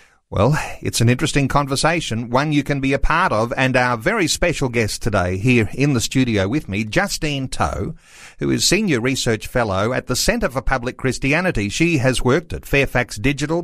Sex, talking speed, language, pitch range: male, 190 wpm, English, 110-145 Hz